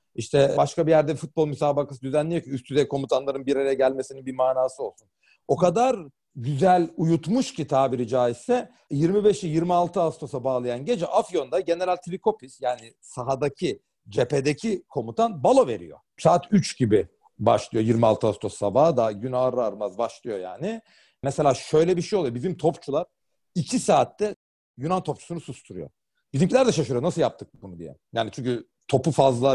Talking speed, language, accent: 150 wpm, Turkish, native